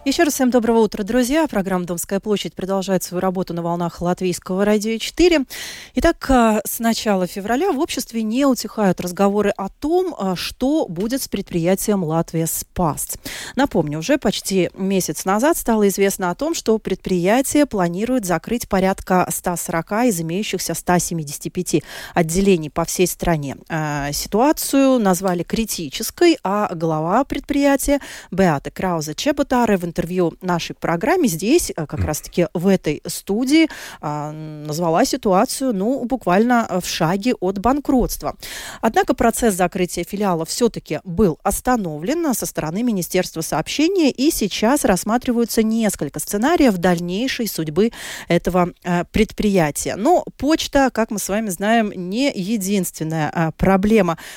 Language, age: Russian, 30-49